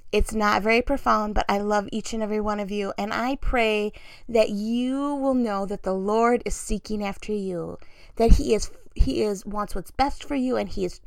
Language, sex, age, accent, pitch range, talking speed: English, female, 30-49, American, 205-245 Hz, 220 wpm